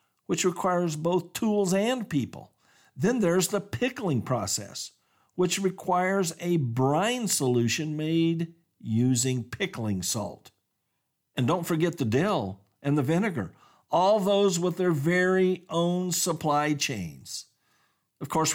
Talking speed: 125 wpm